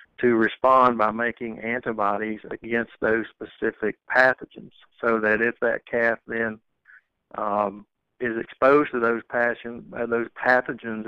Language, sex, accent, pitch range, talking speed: English, male, American, 110-120 Hz, 130 wpm